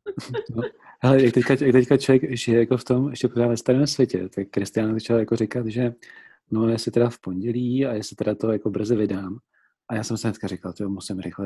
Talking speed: 220 wpm